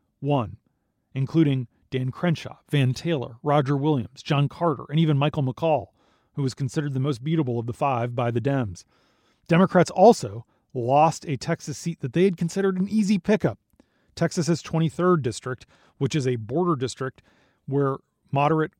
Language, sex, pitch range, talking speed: English, male, 125-160 Hz, 155 wpm